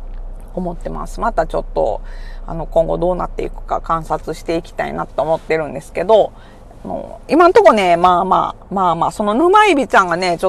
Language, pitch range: Japanese, 155-200 Hz